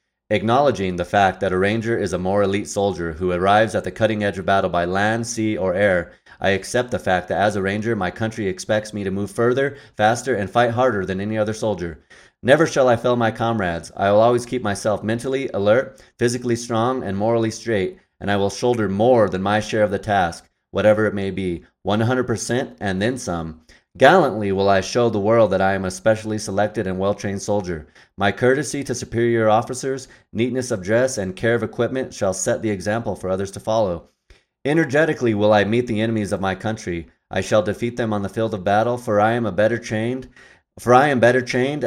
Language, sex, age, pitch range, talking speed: English, male, 30-49, 95-115 Hz, 210 wpm